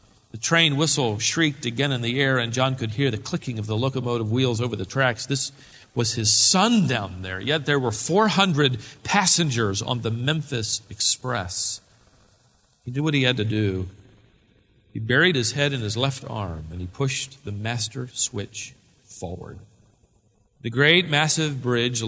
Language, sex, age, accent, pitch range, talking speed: English, male, 40-59, American, 105-130 Hz, 170 wpm